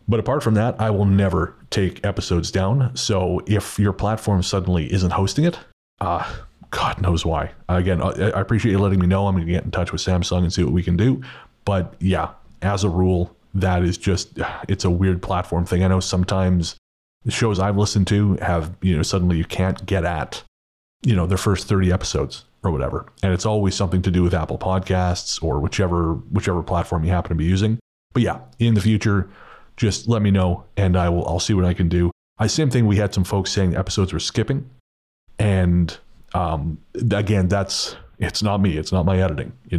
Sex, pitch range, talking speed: male, 90-100 Hz, 210 wpm